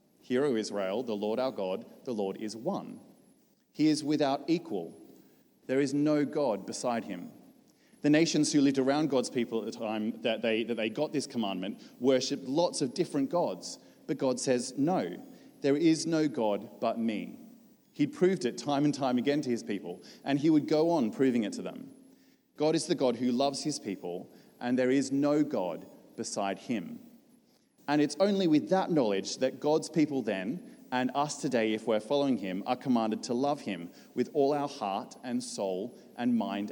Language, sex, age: English, male, 30-49